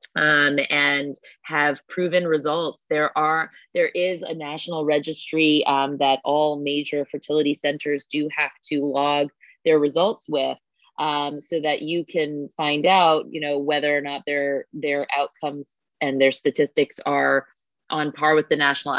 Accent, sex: American, female